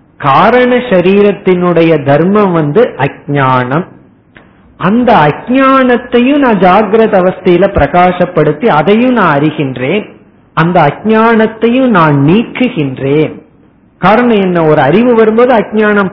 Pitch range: 150-210 Hz